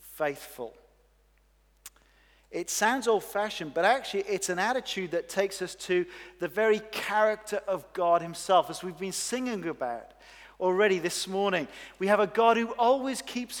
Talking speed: 150 wpm